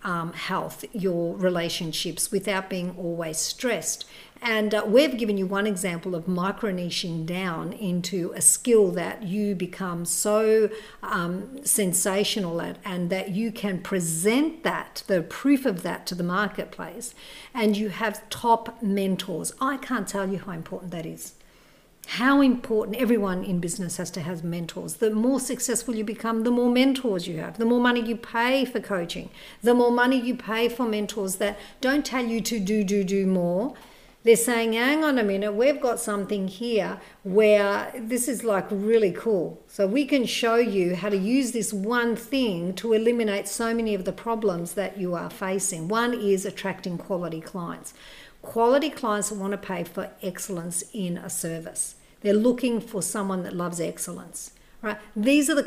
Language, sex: English, female